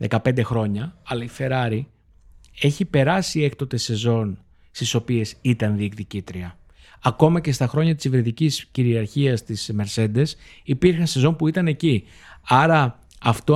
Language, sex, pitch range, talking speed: Greek, male, 110-150 Hz, 130 wpm